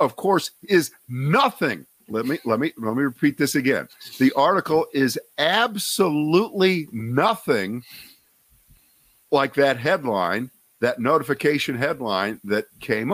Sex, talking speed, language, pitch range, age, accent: male, 120 wpm, English, 115-155 Hz, 50-69, American